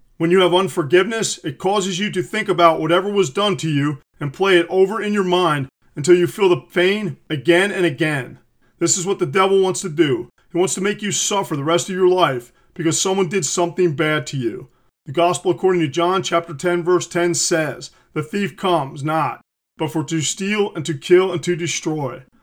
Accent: American